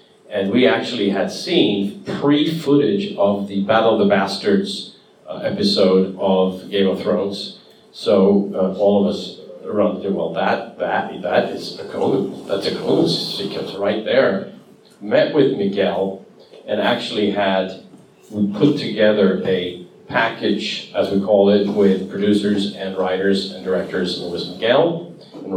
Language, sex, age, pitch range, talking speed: English, male, 50-69, 100-115 Hz, 155 wpm